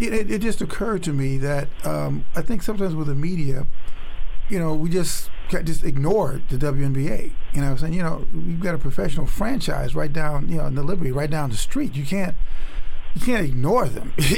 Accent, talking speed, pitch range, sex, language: American, 215 wpm, 140-170 Hz, male, English